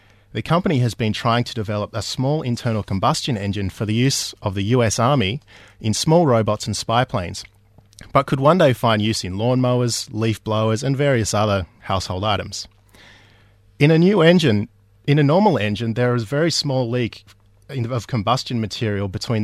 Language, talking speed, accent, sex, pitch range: English, 180 wpm, Australian, male, 100-130 Hz